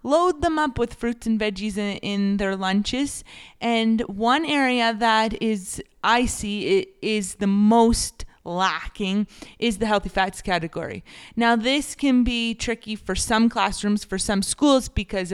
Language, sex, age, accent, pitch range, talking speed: English, female, 20-39, American, 185-230 Hz, 155 wpm